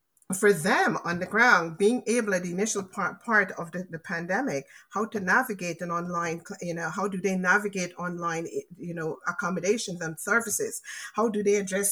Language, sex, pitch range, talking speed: English, female, 170-210 Hz, 185 wpm